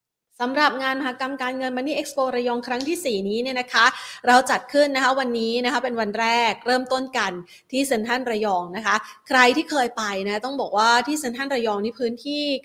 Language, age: Thai, 20-39